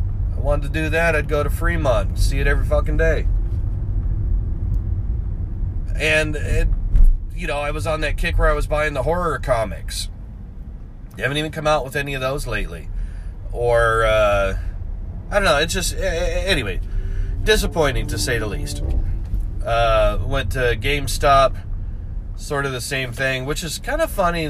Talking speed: 160 wpm